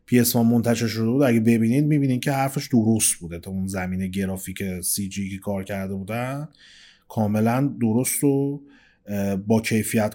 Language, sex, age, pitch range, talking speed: Persian, male, 30-49, 110-140 Hz, 160 wpm